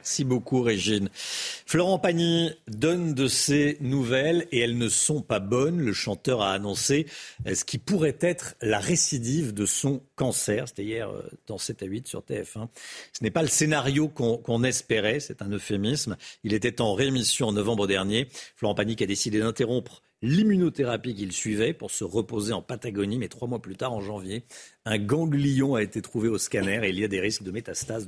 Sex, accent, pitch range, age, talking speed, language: male, French, 105-145 Hz, 50-69, 190 wpm, French